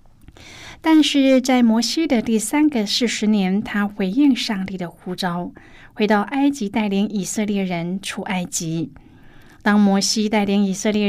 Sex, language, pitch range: female, Chinese, 180-240 Hz